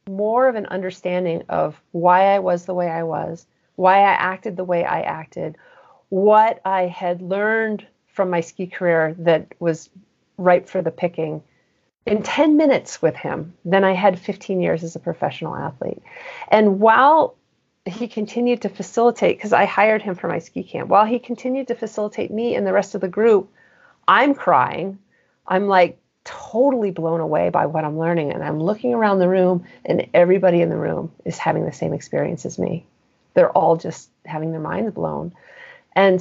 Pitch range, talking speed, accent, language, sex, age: 180-220 Hz, 180 wpm, American, English, female, 40-59